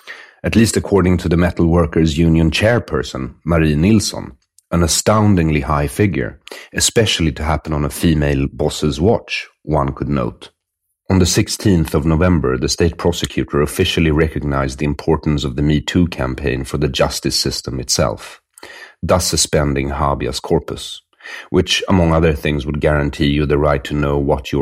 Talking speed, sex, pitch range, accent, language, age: 155 wpm, male, 70-85 Hz, Swedish, English, 40-59